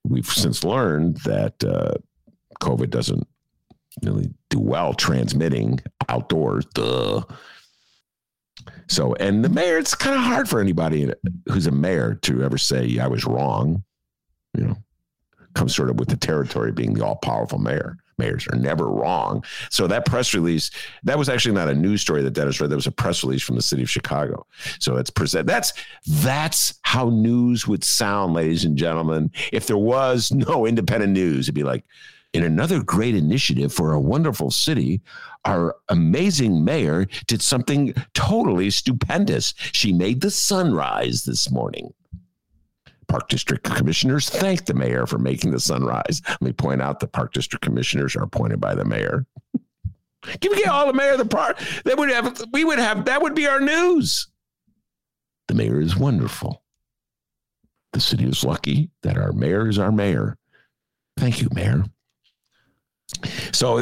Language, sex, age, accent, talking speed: English, male, 50-69, American, 165 wpm